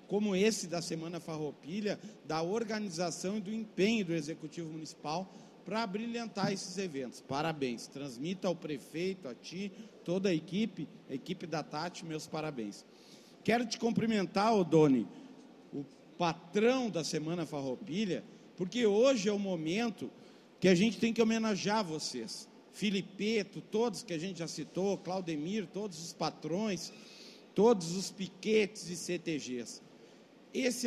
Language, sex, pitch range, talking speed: Portuguese, male, 170-220 Hz, 135 wpm